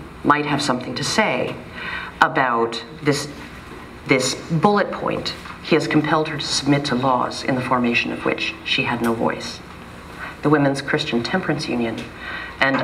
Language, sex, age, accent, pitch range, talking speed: English, female, 40-59, American, 120-155 Hz, 155 wpm